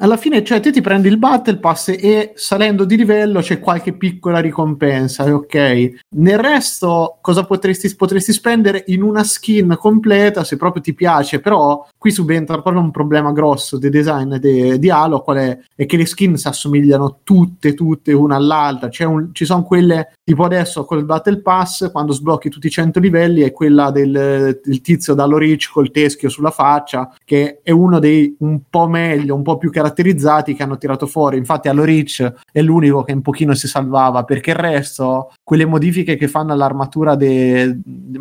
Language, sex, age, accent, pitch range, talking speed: Italian, male, 30-49, native, 135-170 Hz, 185 wpm